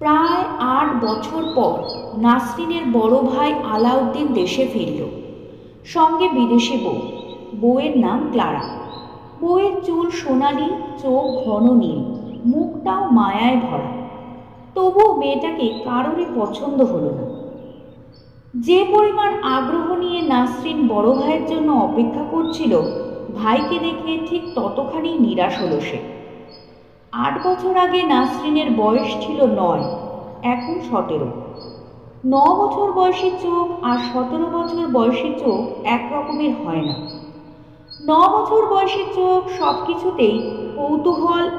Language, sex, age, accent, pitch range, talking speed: Bengali, female, 50-69, native, 240-330 Hz, 105 wpm